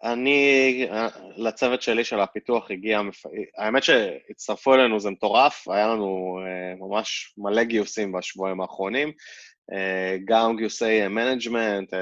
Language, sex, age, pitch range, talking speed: Hebrew, male, 20-39, 100-125 Hz, 105 wpm